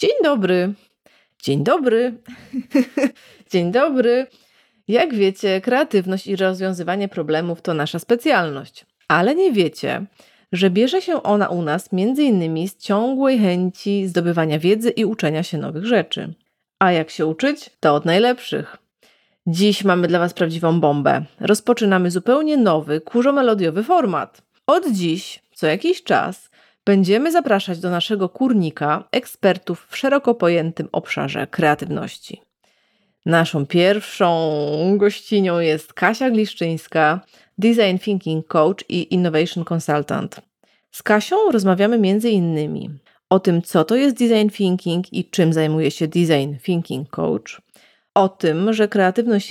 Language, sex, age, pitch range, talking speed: Polish, female, 30-49, 170-230 Hz, 125 wpm